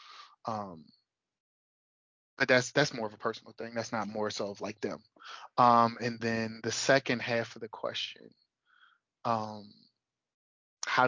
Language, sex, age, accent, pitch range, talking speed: English, male, 20-39, American, 115-140 Hz, 145 wpm